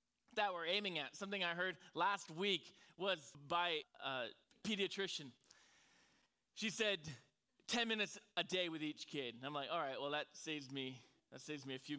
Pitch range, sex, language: 155-205 Hz, male, English